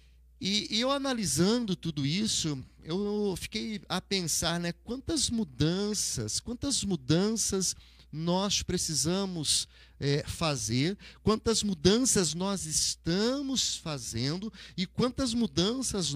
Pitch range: 125-195 Hz